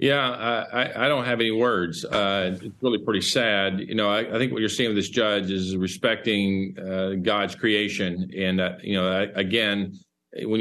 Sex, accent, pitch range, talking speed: male, American, 95-105 Hz, 205 wpm